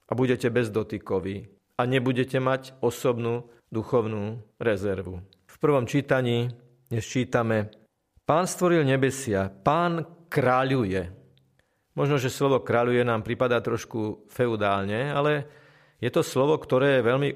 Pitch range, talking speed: 110-140 Hz, 120 wpm